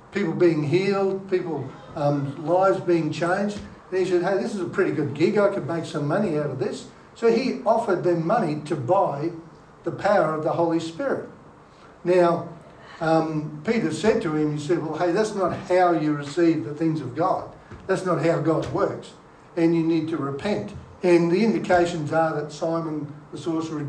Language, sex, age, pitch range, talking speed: English, male, 60-79, 160-190 Hz, 190 wpm